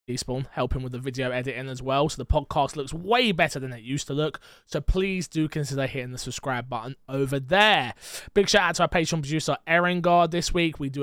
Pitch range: 140-180 Hz